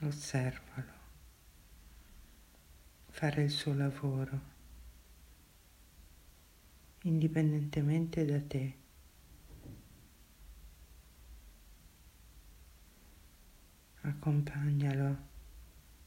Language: Italian